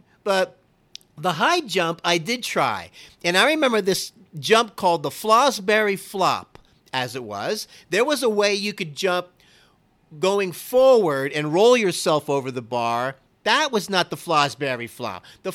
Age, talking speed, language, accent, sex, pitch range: 50-69, 160 wpm, English, American, male, 150-205 Hz